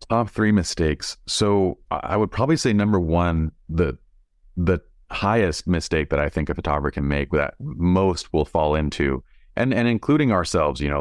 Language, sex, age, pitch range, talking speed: English, male, 30-49, 75-95 Hz, 175 wpm